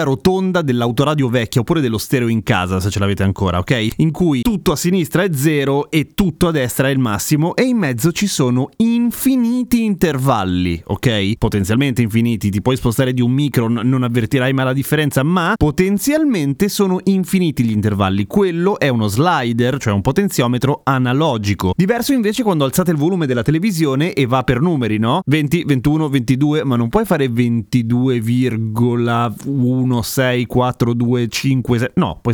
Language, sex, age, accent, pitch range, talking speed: Italian, male, 30-49, native, 120-165 Hz, 165 wpm